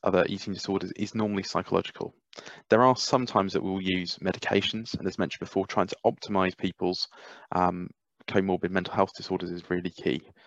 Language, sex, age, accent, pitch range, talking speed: English, male, 20-39, British, 90-100 Hz, 170 wpm